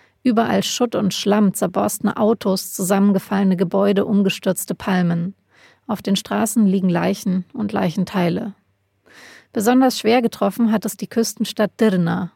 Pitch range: 185-220 Hz